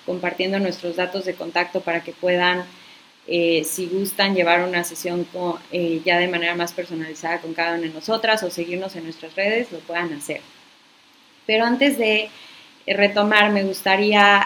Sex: female